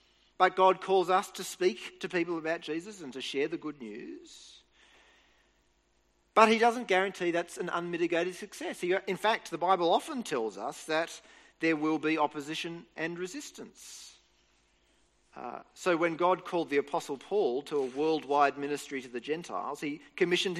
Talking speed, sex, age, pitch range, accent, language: 160 wpm, male, 40-59, 120-190 Hz, Australian, English